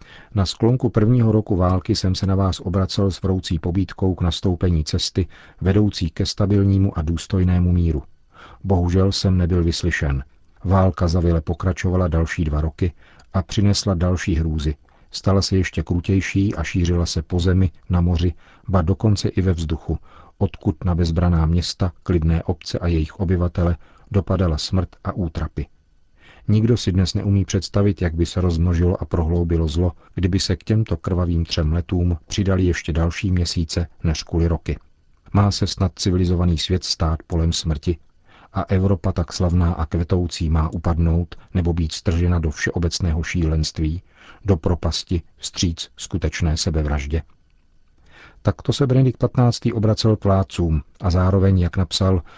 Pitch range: 85-95 Hz